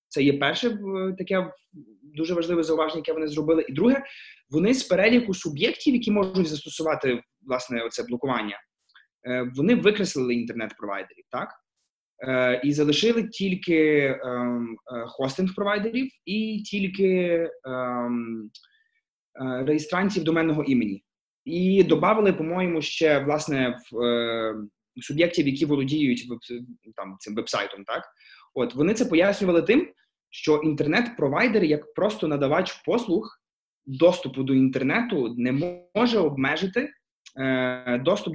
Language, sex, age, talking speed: Ukrainian, male, 20-39, 110 wpm